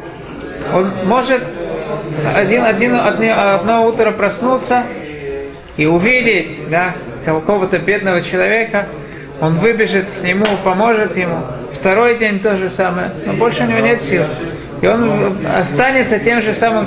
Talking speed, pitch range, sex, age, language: 130 wpm, 175-235 Hz, male, 40-59, Russian